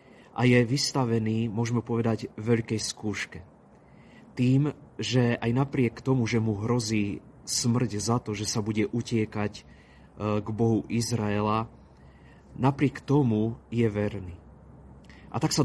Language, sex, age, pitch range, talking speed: Slovak, male, 30-49, 105-125 Hz, 125 wpm